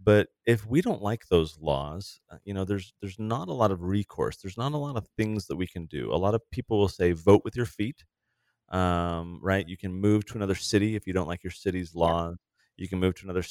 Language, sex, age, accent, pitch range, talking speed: English, male, 30-49, American, 85-110 Hz, 250 wpm